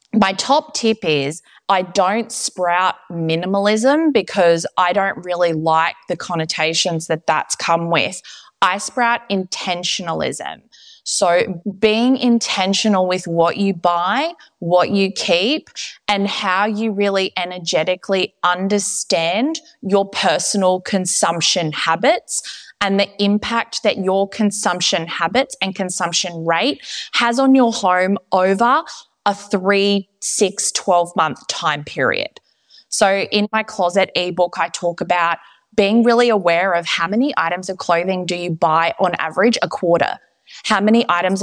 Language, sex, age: English, female, 20-39